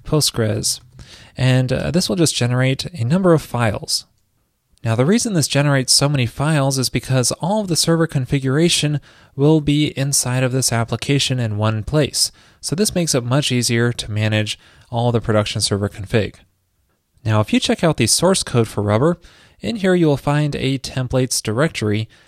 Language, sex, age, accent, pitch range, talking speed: English, male, 30-49, American, 115-145 Hz, 180 wpm